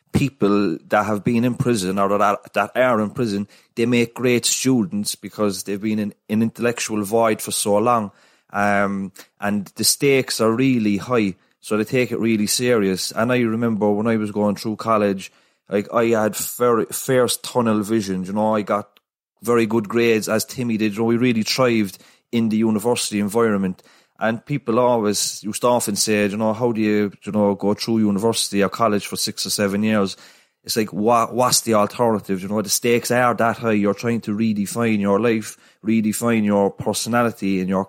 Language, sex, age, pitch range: English, male, 30-49, 100-115 Hz